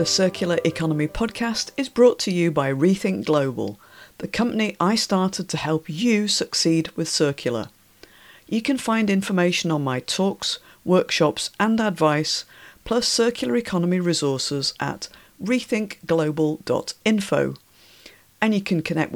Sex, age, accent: female, 50-69, British